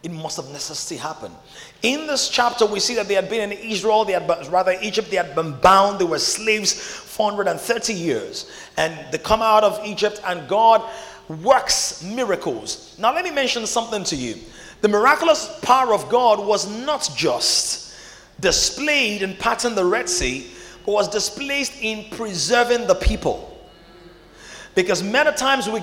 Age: 30-49